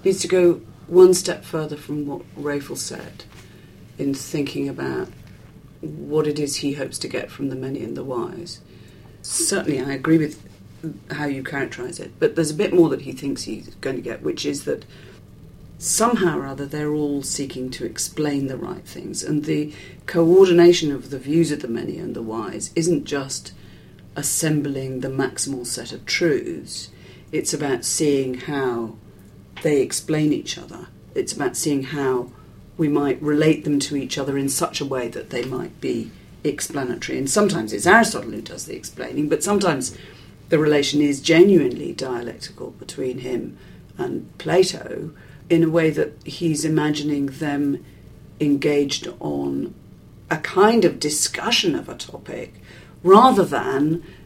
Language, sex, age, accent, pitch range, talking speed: English, female, 40-59, British, 135-165 Hz, 160 wpm